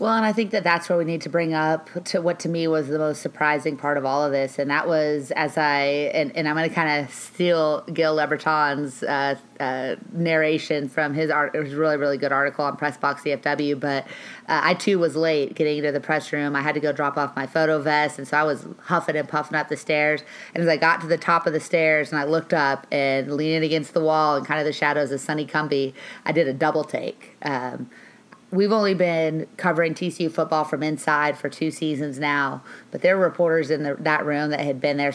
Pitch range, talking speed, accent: 140-160 Hz, 240 wpm, American